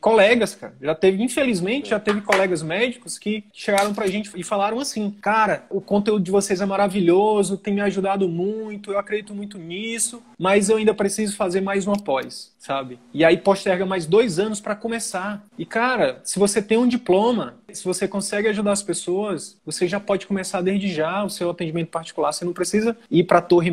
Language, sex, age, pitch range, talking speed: Portuguese, male, 20-39, 170-205 Hz, 195 wpm